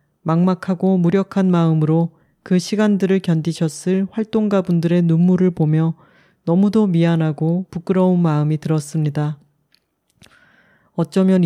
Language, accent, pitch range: Korean, native, 165-205 Hz